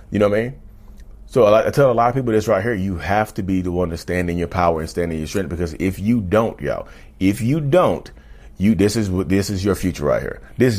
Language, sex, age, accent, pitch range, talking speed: English, male, 30-49, American, 85-105 Hz, 265 wpm